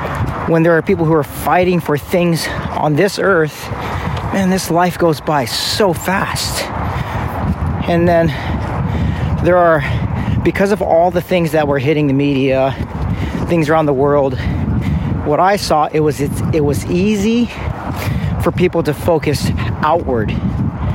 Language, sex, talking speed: English, male, 140 wpm